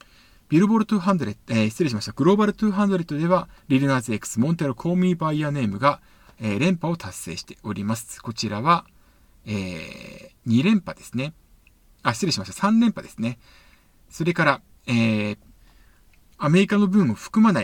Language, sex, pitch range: Japanese, male, 110-180 Hz